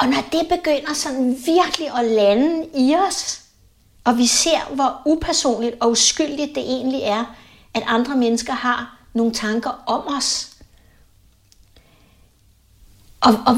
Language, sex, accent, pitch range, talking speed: Danish, female, native, 245-305 Hz, 135 wpm